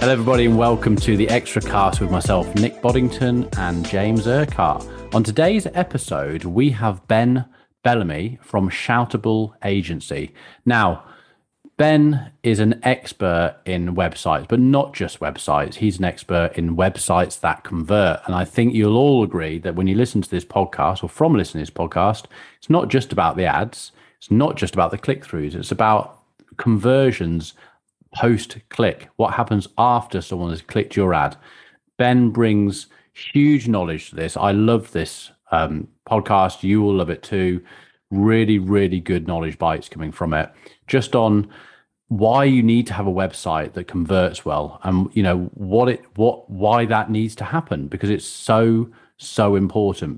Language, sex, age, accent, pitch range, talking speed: English, male, 30-49, British, 90-120 Hz, 165 wpm